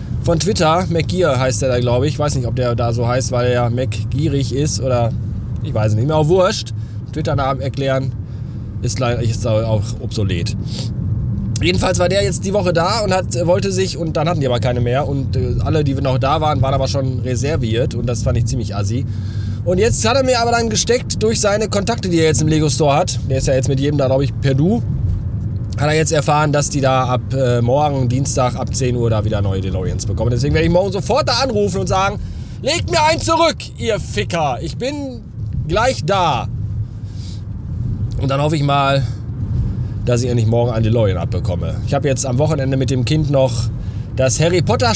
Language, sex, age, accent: German, male, 20-39, German